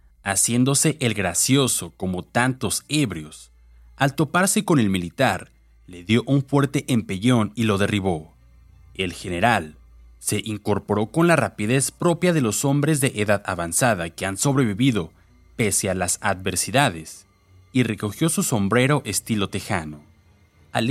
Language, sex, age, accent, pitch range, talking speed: Spanish, male, 30-49, Mexican, 85-130 Hz, 135 wpm